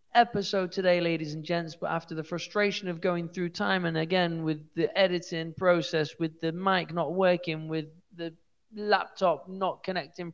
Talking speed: 170 wpm